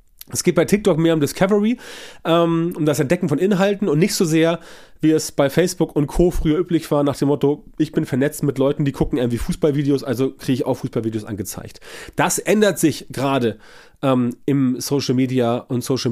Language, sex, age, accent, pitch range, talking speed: German, male, 30-49, German, 120-160 Hz, 200 wpm